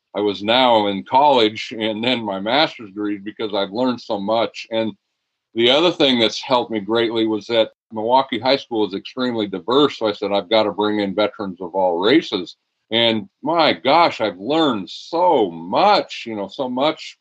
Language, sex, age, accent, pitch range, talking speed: English, male, 50-69, American, 105-125 Hz, 190 wpm